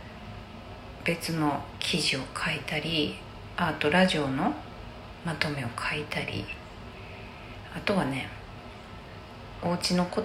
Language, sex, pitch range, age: Japanese, female, 110-175 Hz, 40-59